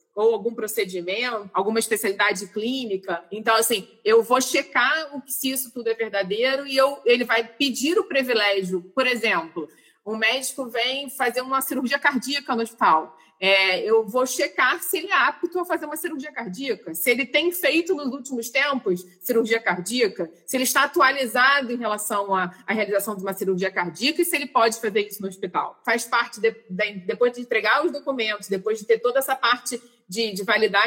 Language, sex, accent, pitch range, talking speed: Portuguese, female, Brazilian, 210-265 Hz, 175 wpm